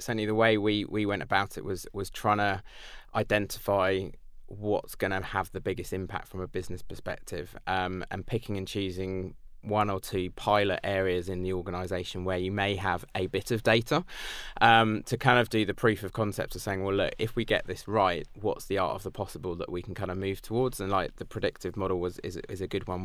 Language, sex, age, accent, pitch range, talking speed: English, male, 20-39, British, 95-105 Hz, 225 wpm